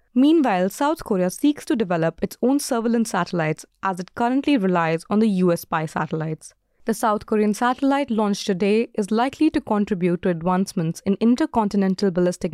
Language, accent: English, Indian